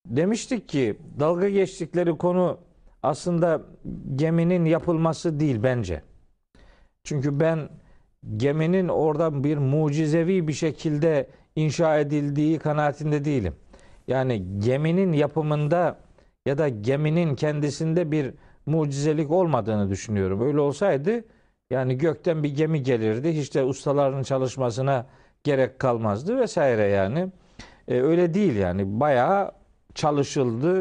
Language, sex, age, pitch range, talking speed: Turkish, male, 50-69, 130-170 Hz, 105 wpm